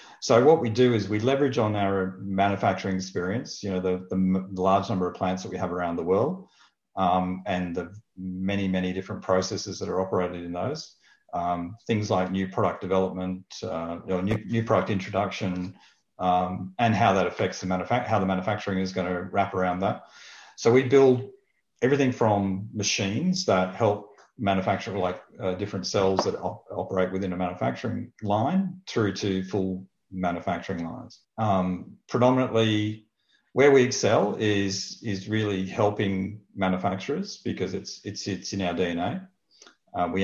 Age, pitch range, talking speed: 40-59, 95-110 Hz, 165 wpm